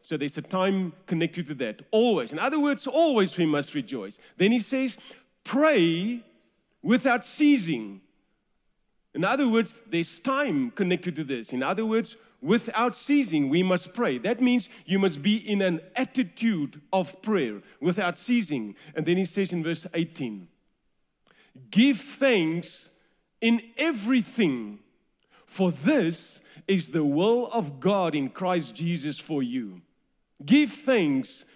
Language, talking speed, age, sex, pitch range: English, 140 wpm, 40-59, male, 165-240 Hz